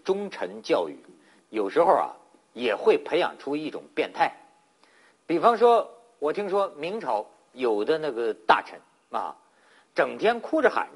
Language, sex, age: Chinese, male, 50-69